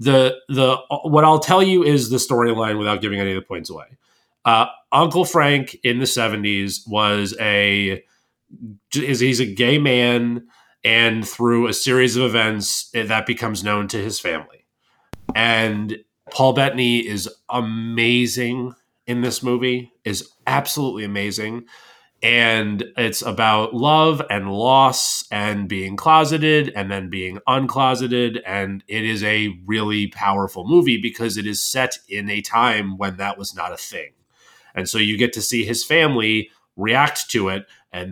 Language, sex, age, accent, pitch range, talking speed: English, male, 30-49, American, 105-130 Hz, 150 wpm